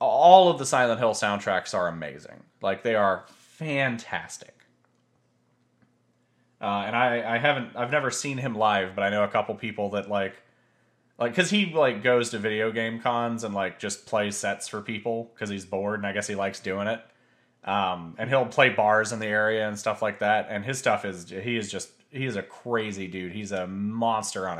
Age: 30-49